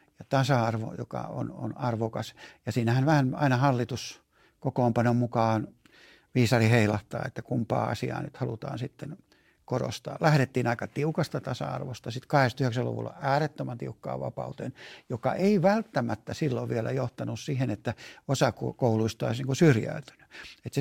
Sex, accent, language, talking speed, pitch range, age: male, native, Finnish, 130 wpm, 115-145 Hz, 60-79